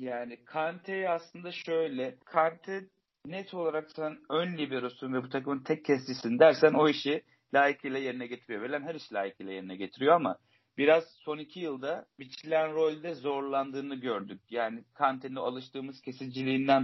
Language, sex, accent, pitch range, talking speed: Turkish, male, native, 130-160 Hz, 145 wpm